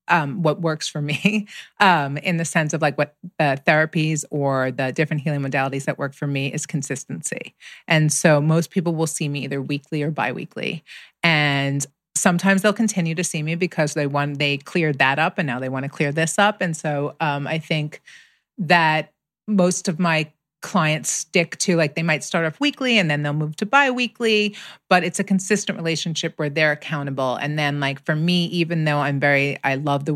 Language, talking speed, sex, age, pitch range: English, 205 wpm, female, 30-49, 140-165 Hz